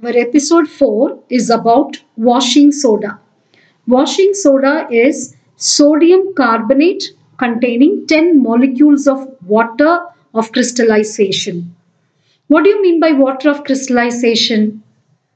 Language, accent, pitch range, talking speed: English, Indian, 225-290 Hz, 105 wpm